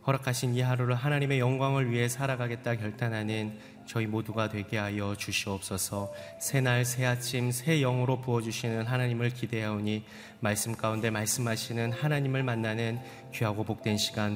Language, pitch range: Korean, 100-125 Hz